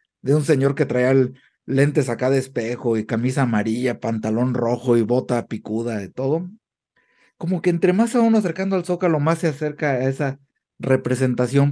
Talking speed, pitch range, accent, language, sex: 175 wpm, 120-160 Hz, Mexican, Spanish, male